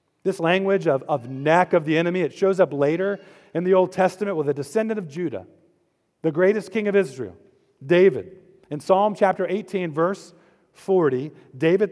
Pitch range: 155-195 Hz